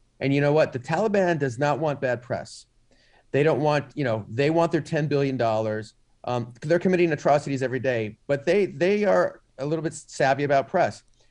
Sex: male